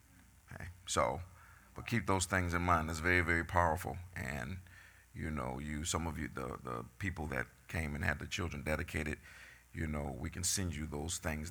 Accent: American